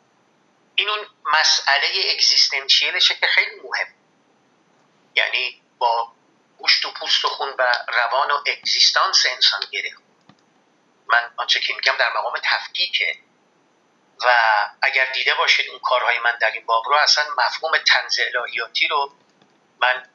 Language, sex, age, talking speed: Persian, male, 50-69, 130 wpm